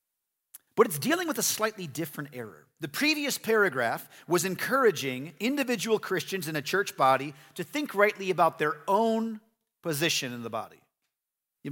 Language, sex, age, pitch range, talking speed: English, male, 40-59, 115-175 Hz, 155 wpm